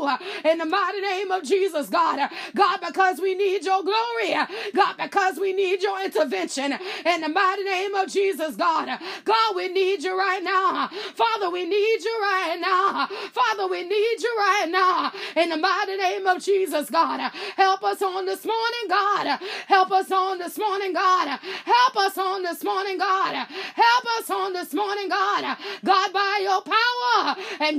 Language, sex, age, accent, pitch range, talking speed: English, female, 20-39, American, 370-415 Hz, 175 wpm